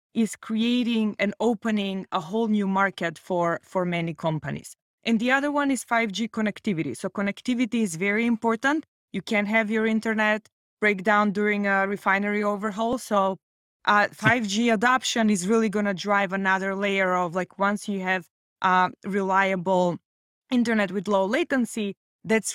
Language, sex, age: English, female, 20-39